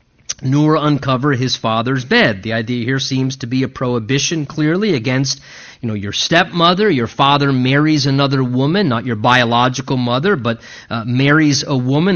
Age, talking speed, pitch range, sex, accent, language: 30-49, 165 wpm, 130-195 Hz, male, American, English